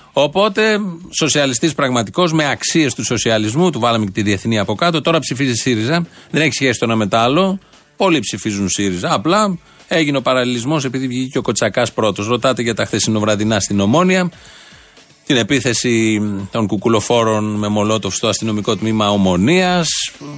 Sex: male